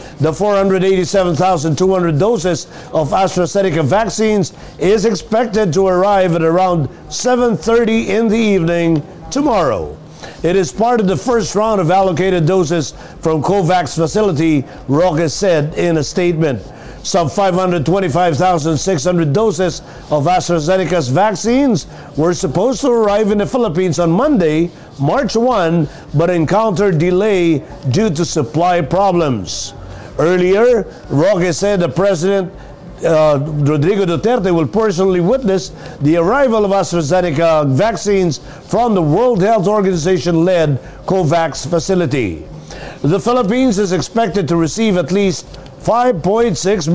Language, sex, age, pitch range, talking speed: English, male, 50-69, 160-200 Hz, 115 wpm